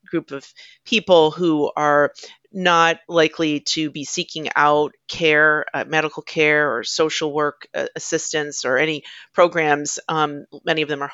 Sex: female